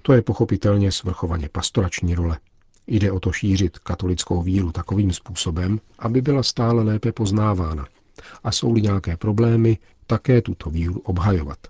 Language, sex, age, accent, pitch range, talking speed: Czech, male, 50-69, native, 90-105 Hz, 140 wpm